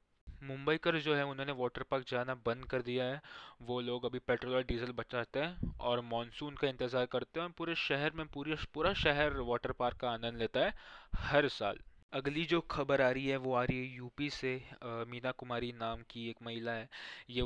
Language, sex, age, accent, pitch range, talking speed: Hindi, male, 20-39, native, 120-135 Hz, 215 wpm